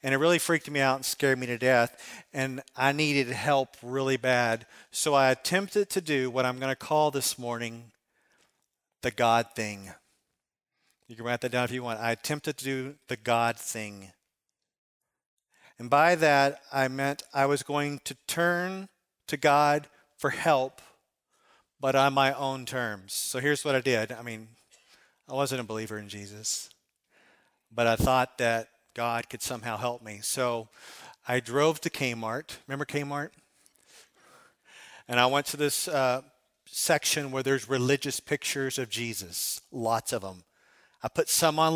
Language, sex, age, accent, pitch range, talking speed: English, male, 40-59, American, 120-145 Hz, 165 wpm